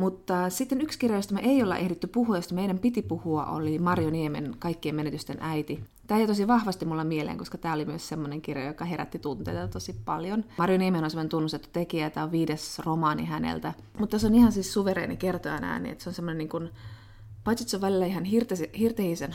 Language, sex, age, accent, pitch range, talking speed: Finnish, female, 20-39, native, 150-190 Hz, 210 wpm